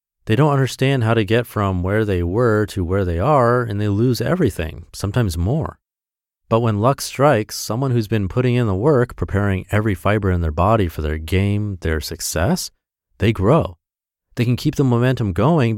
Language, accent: English, American